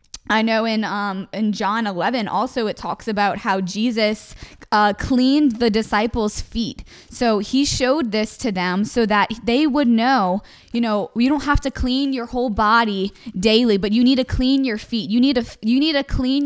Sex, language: female, English